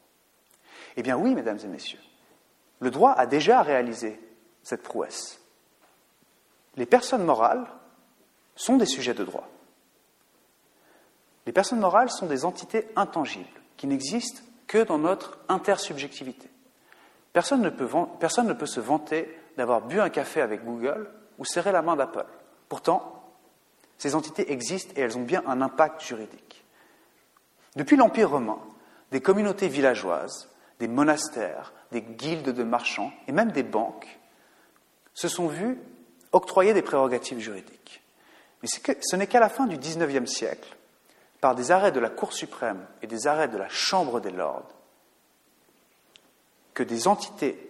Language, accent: French, French